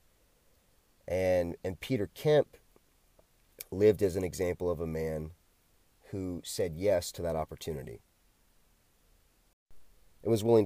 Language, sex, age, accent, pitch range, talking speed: English, male, 30-49, American, 80-105 Hz, 115 wpm